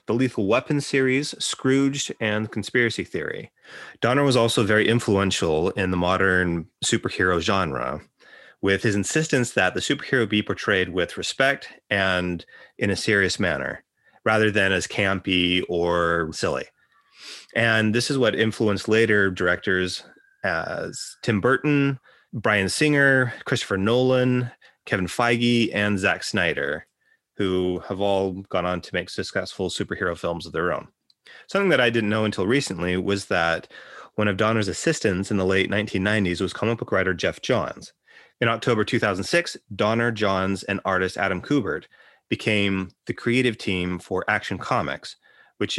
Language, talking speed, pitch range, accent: English, 145 wpm, 95-115 Hz, American